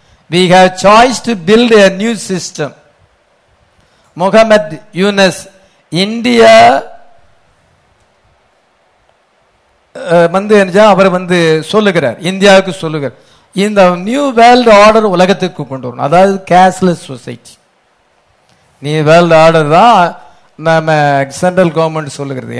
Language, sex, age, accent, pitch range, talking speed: English, male, 50-69, Indian, 155-205 Hz, 95 wpm